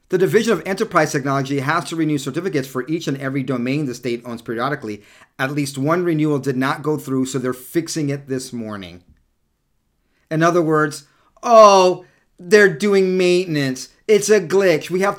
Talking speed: 175 wpm